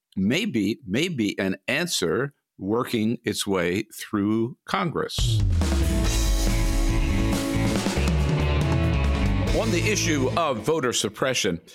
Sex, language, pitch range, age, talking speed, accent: male, English, 95-120 Hz, 50-69, 75 wpm, American